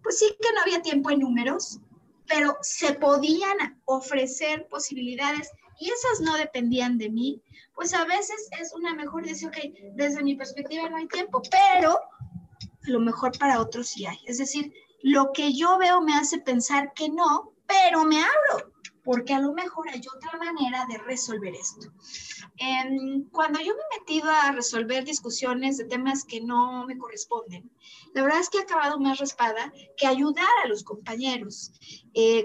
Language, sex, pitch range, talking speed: Spanish, female, 255-330 Hz, 170 wpm